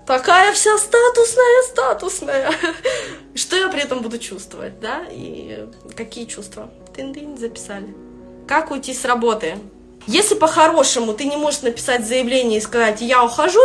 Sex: female